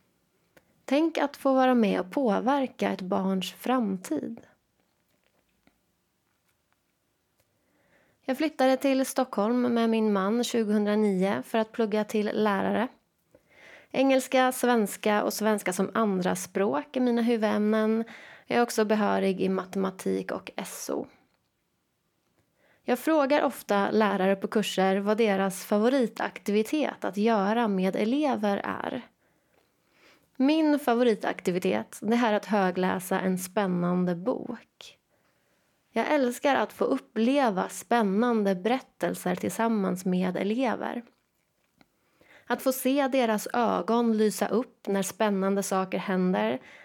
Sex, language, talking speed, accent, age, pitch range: female, Swedish, 110 wpm, native, 20-39, 195-250 Hz